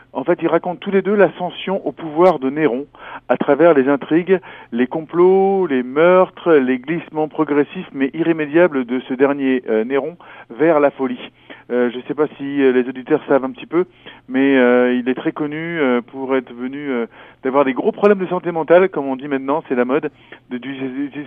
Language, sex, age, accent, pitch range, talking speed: French, male, 40-59, French, 130-170 Hz, 205 wpm